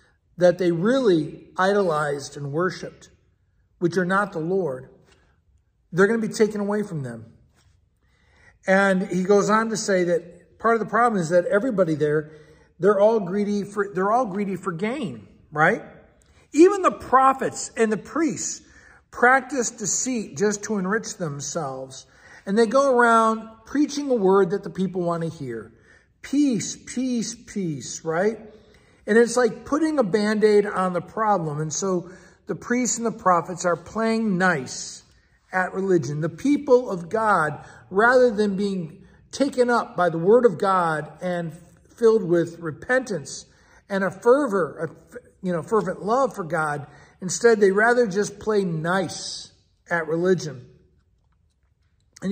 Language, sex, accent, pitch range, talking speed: English, male, American, 165-225 Hz, 150 wpm